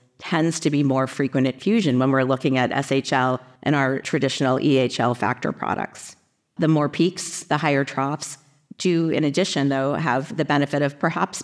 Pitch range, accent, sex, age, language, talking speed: 135-160 Hz, American, female, 40-59, English, 175 wpm